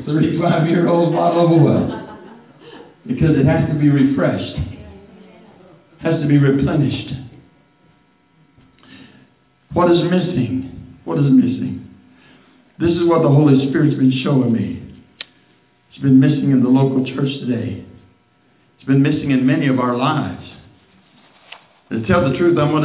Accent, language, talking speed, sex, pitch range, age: American, English, 140 wpm, male, 120-155 Hz, 60-79